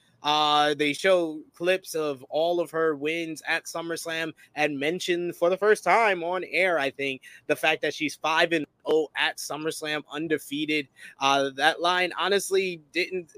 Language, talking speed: English, 155 wpm